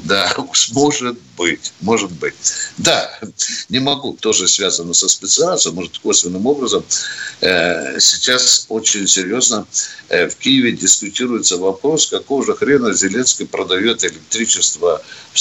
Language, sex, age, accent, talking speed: Russian, male, 60-79, native, 115 wpm